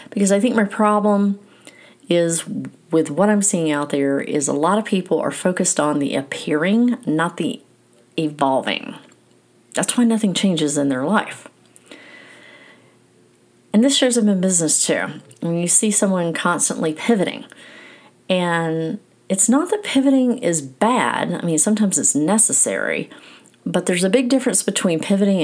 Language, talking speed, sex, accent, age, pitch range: English, 150 wpm, female, American, 40-59, 160-220 Hz